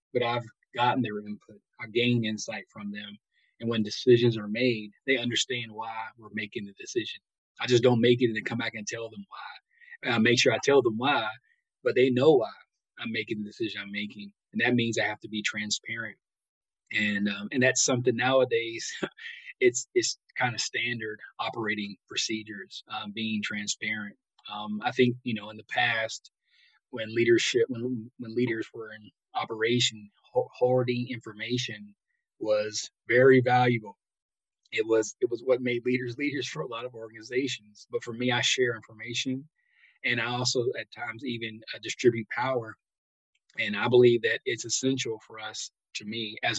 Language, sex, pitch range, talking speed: English, male, 110-130 Hz, 180 wpm